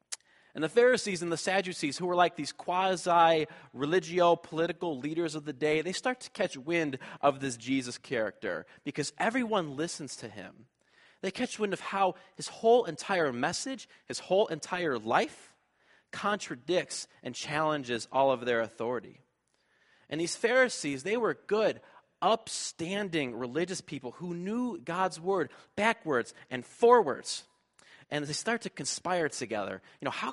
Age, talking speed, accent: 30-49, 145 wpm, American